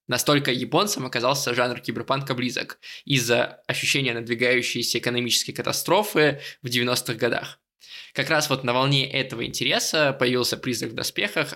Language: Russian